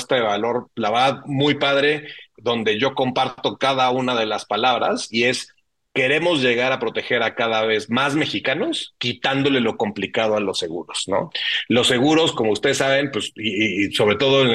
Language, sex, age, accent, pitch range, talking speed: Spanish, male, 30-49, Mexican, 115-140 Hz, 175 wpm